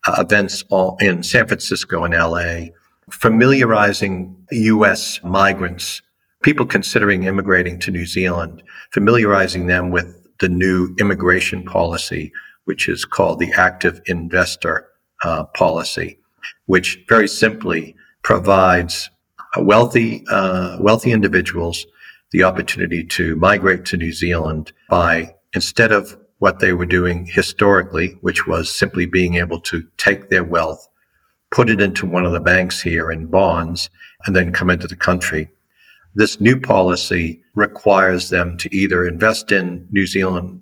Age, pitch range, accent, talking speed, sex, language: 50-69, 85-100 Hz, American, 135 wpm, male, English